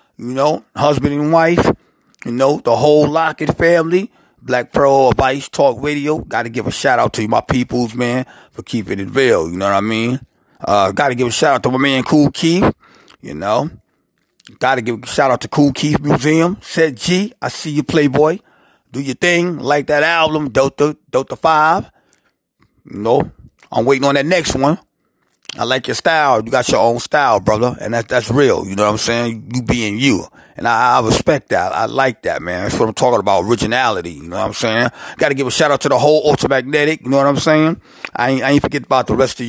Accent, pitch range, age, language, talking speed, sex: American, 120-150 Hz, 30-49, English, 220 wpm, male